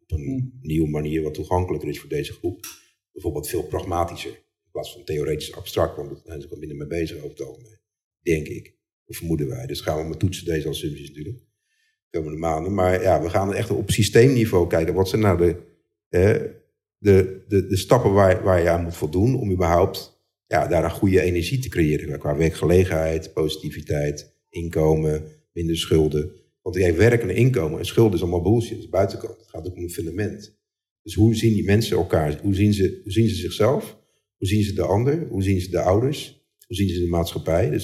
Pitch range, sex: 85-105 Hz, male